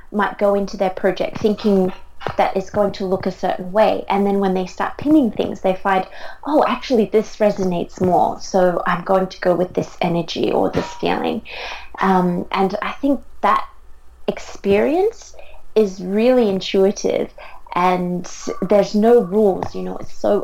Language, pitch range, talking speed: English, 185-205 Hz, 165 wpm